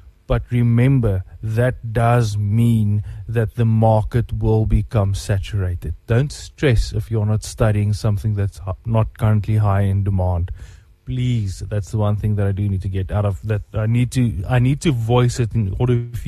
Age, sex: 30-49, male